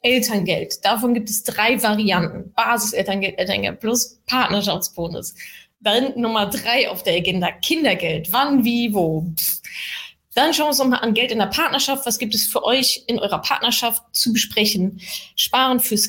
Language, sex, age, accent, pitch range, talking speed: German, female, 20-39, German, 200-245 Hz, 160 wpm